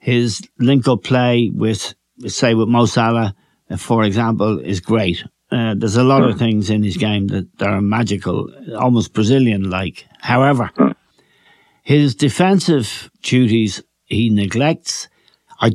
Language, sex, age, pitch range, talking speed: English, male, 60-79, 110-135 Hz, 125 wpm